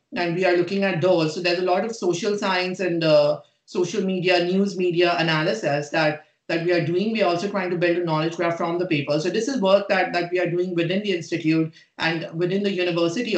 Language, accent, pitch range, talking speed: English, Indian, 160-195 Hz, 235 wpm